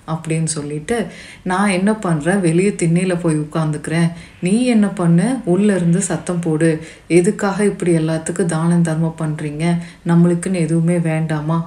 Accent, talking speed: native, 130 wpm